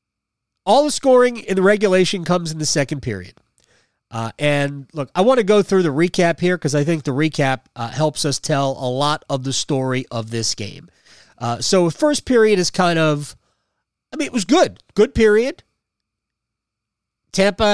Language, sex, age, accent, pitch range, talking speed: English, male, 30-49, American, 130-185 Hz, 180 wpm